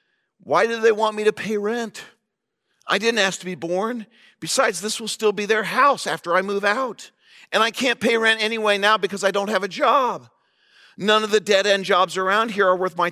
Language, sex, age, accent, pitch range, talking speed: English, male, 50-69, American, 160-215 Hz, 220 wpm